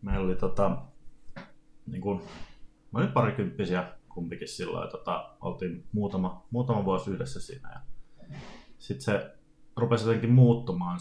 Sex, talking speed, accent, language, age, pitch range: male, 125 wpm, native, Finnish, 30-49, 95-130 Hz